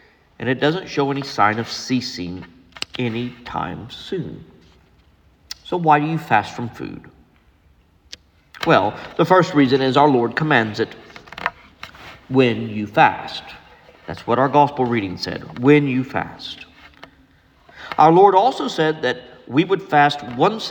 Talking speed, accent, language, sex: 135 wpm, American, English, male